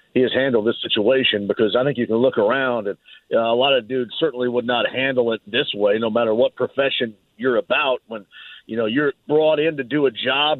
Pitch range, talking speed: 130-185 Hz, 225 wpm